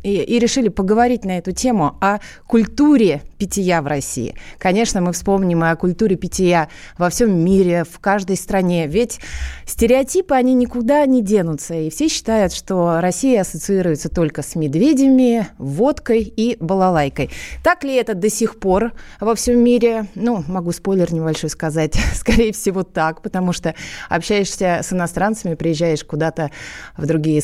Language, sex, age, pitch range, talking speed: Russian, female, 20-39, 165-230 Hz, 150 wpm